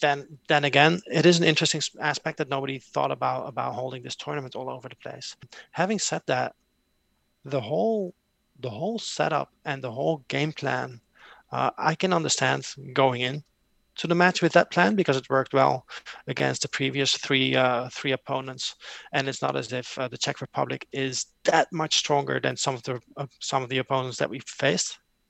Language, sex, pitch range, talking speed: English, male, 130-160 Hz, 190 wpm